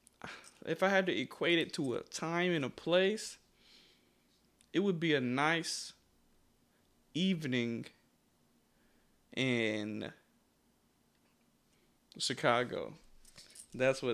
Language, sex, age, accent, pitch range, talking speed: English, male, 20-39, American, 125-170 Hz, 85 wpm